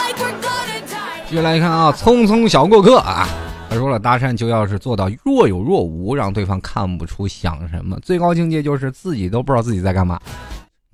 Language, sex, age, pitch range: Chinese, male, 20-39, 100-160 Hz